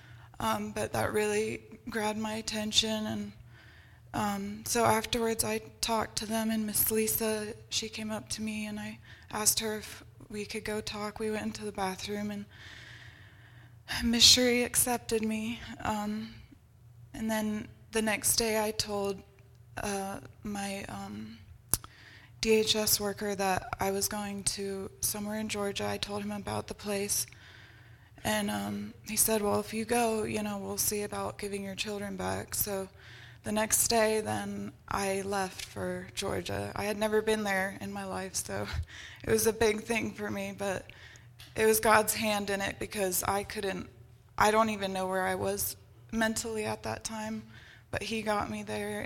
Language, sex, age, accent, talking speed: English, female, 20-39, American, 165 wpm